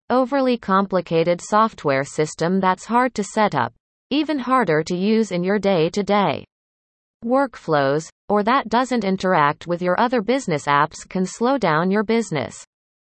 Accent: American